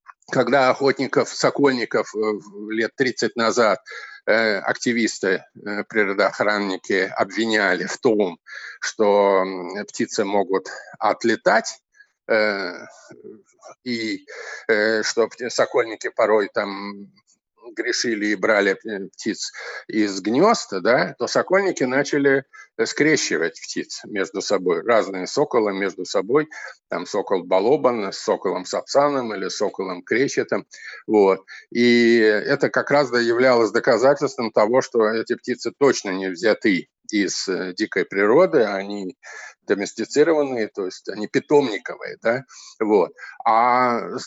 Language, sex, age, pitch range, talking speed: Russian, male, 50-69, 105-170 Hz, 100 wpm